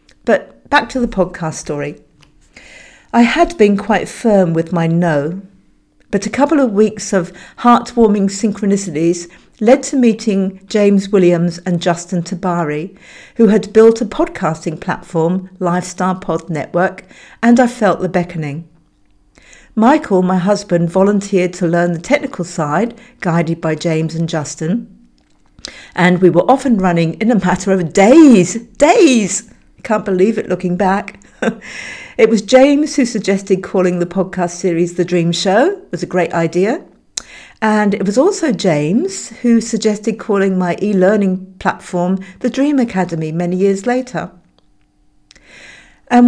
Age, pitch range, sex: 50-69, 175-220 Hz, female